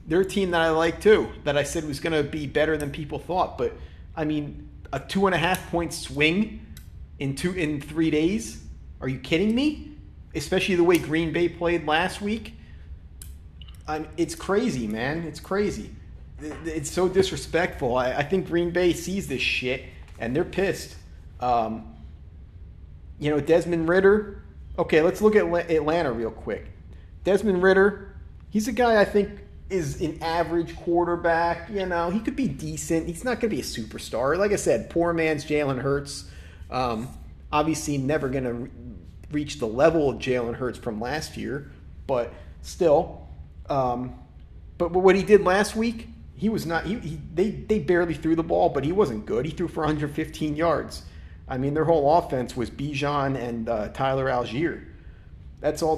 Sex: male